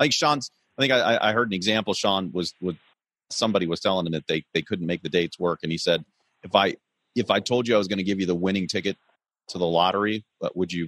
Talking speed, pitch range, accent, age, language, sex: 270 wpm, 90-110 Hz, American, 30-49, English, male